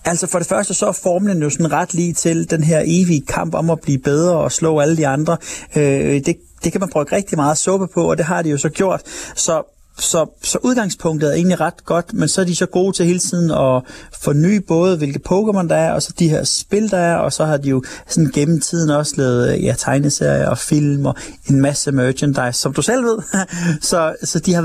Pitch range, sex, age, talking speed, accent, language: 135-175 Hz, male, 30-49, 240 wpm, native, Danish